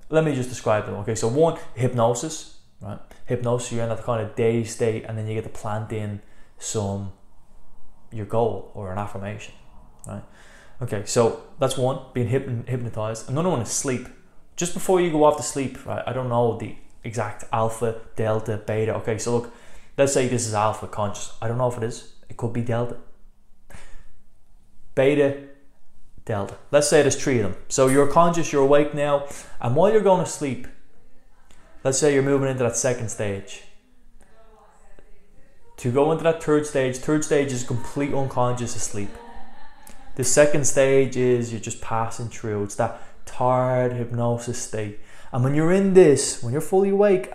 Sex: male